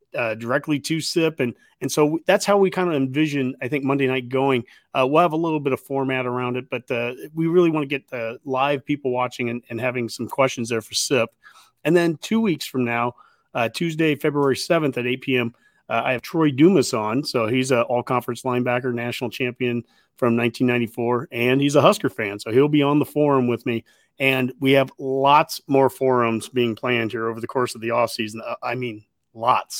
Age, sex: 40-59, male